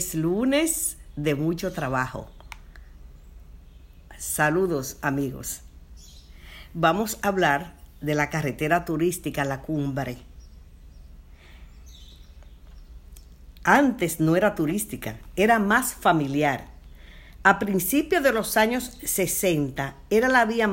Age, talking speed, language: 50-69, 90 wpm, Spanish